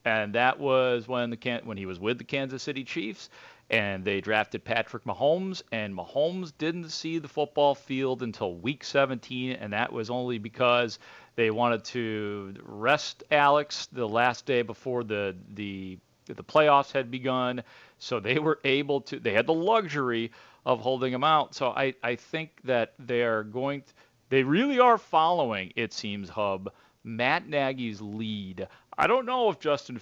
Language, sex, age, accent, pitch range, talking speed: English, male, 40-59, American, 110-140 Hz, 170 wpm